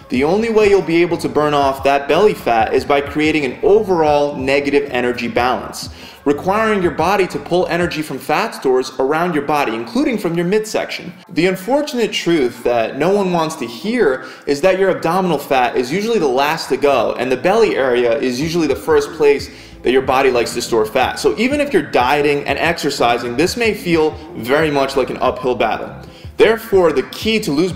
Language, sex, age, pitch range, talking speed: English, male, 20-39, 135-190 Hz, 200 wpm